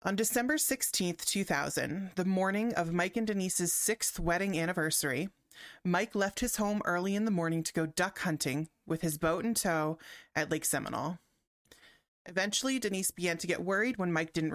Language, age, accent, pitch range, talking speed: English, 30-49, American, 155-200 Hz, 175 wpm